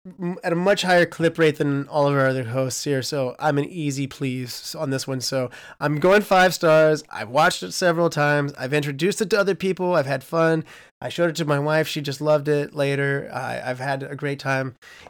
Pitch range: 140-165 Hz